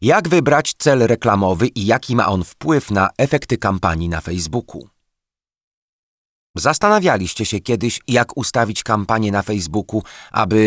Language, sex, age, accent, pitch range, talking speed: Polish, male, 40-59, native, 95-135 Hz, 130 wpm